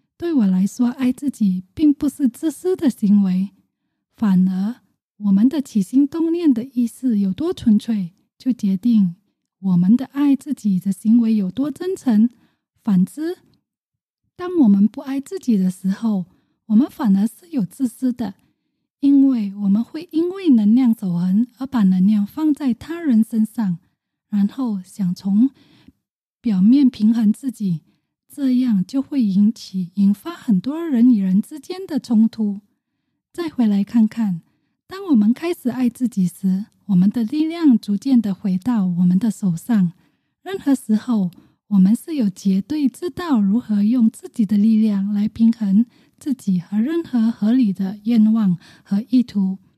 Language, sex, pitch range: English, female, 200-265 Hz